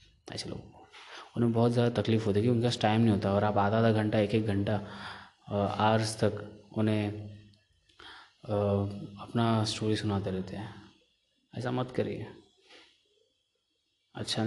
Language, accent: Hindi, native